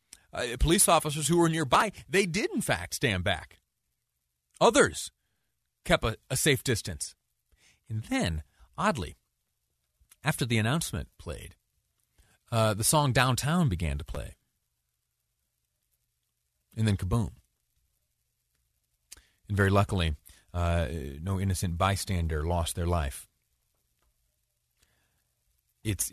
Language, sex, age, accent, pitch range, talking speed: English, male, 40-59, American, 80-115 Hz, 105 wpm